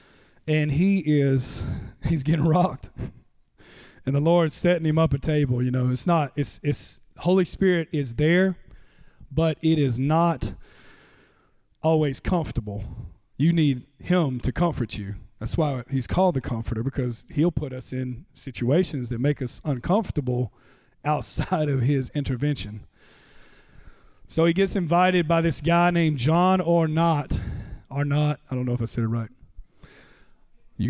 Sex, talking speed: male, 150 wpm